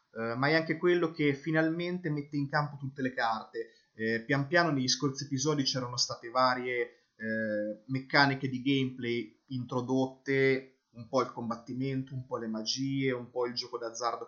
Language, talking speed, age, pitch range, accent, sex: Italian, 160 wpm, 20-39, 125-150 Hz, native, male